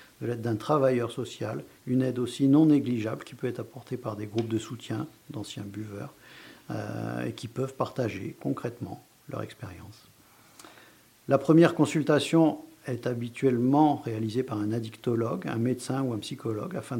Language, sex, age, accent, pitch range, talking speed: French, male, 50-69, French, 115-140 Hz, 155 wpm